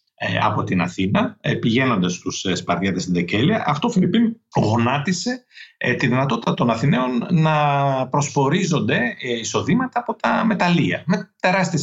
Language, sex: English, male